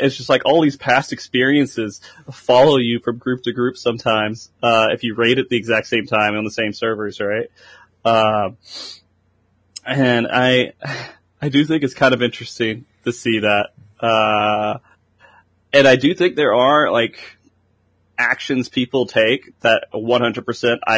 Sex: male